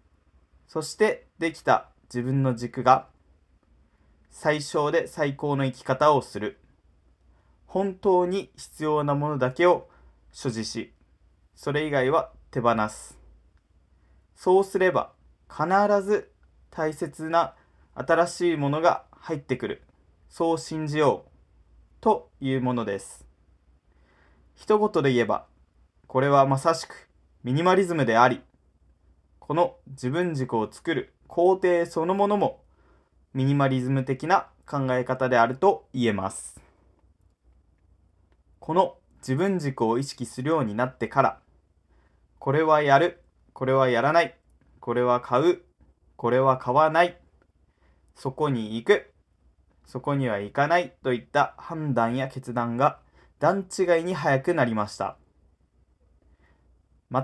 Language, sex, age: Japanese, male, 20-39